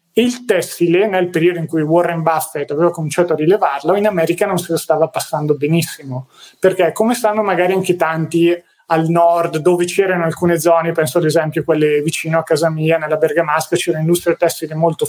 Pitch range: 160-190 Hz